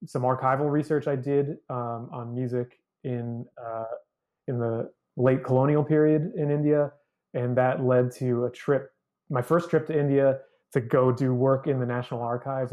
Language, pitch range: English, 125-150 Hz